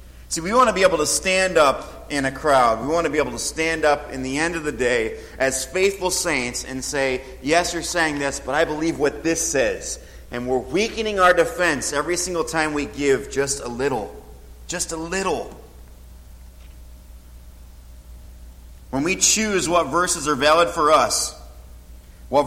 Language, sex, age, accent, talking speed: English, male, 30-49, American, 180 wpm